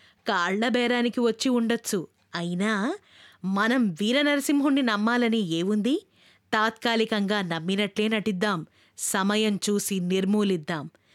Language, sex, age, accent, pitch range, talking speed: Telugu, female, 20-39, native, 205-275 Hz, 75 wpm